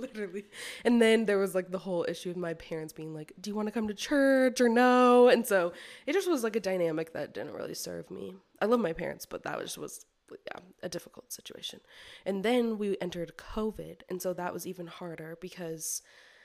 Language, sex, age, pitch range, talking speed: English, female, 20-39, 165-195 Hz, 220 wpm